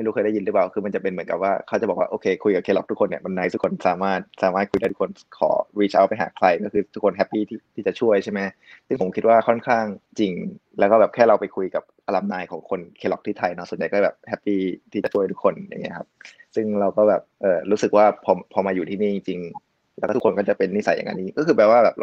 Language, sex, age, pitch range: English, male, 20-39, 95-115 Hz